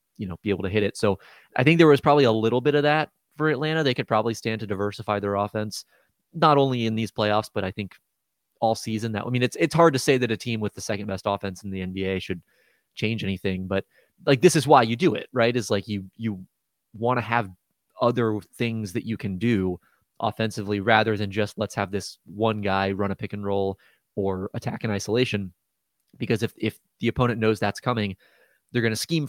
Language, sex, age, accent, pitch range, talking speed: English, male, 20-39, American, 100-125 Hz, 230 wpm